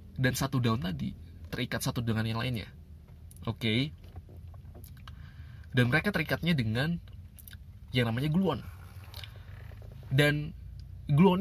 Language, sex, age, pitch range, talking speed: Indonesian, male, 20-39, 95-135 Hz, 105 wpm